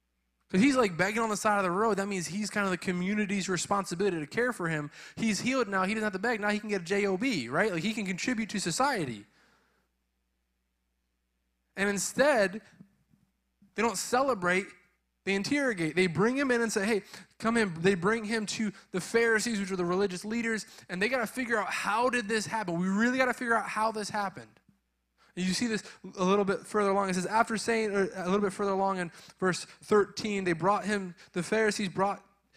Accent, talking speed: American, 210 wpm